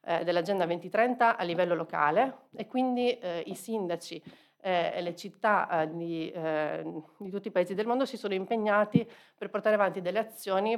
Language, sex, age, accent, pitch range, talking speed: Italian, female, 40-59, native, 175-210 Hz, 165 wpm